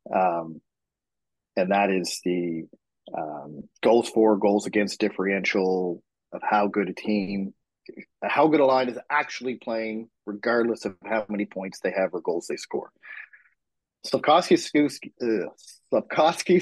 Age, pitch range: 30-49, 100-130 Hz